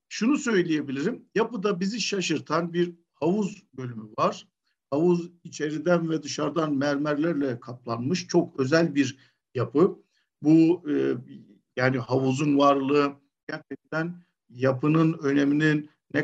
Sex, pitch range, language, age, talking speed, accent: male, 145-205 Hz, Turkish, 50-69, 105 wpm, native